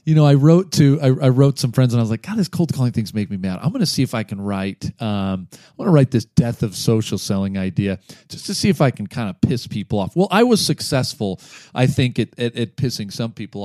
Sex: male